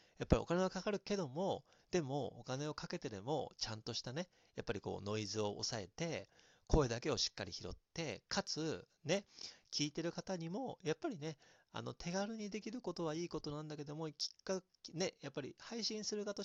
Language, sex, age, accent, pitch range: Japanese, male, 40-59, native, 115-175 Hz